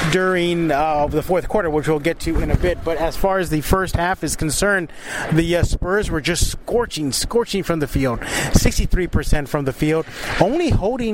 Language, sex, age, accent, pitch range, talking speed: English, male, 30-49, American, 155-190 Hz, 205 wpm